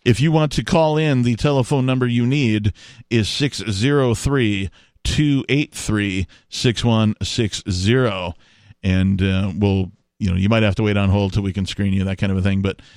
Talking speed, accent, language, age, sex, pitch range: 165 wpm, American, English, 40-59, male, 105-135 Hz